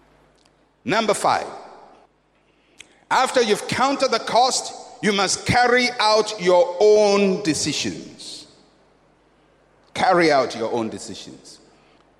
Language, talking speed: English, 95 wpm